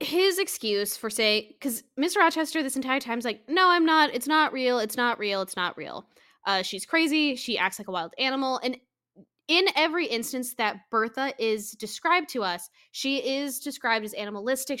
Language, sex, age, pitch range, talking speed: English, female, 10-29, 210-290 Hz, 195 wpm